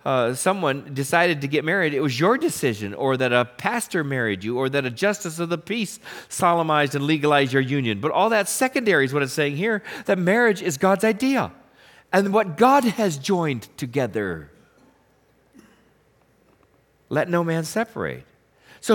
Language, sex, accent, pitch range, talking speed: English, male, American, 145-210 Hz, 170 wpm